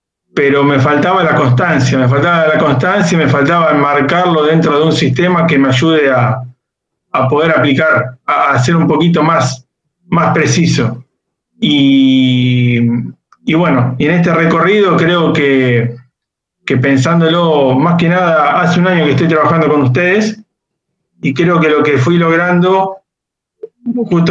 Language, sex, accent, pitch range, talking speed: Spanish, male, Argentinian, 140-175 Hz, 145 wpm